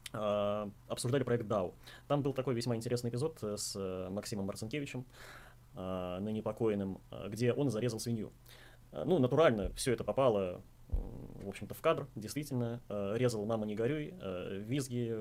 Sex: male